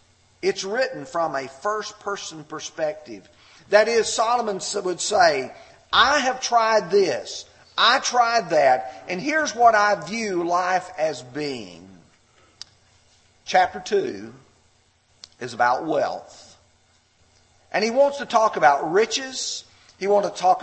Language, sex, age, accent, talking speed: English, male, 40-59, American, 120 wpm